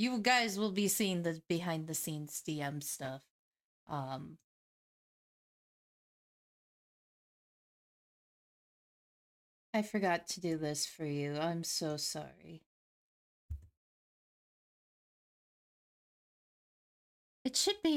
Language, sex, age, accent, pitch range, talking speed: English, female, 30-49, American, 150-205 Hz, 80 wpm